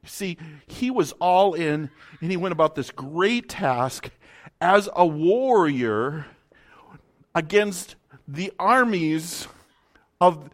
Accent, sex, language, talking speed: American, male, English, 110 wpm